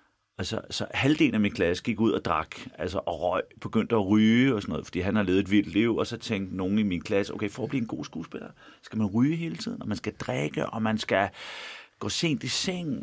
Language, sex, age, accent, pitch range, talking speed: Danish, male, 40-59, native, 95-130 Hz, 260 wpm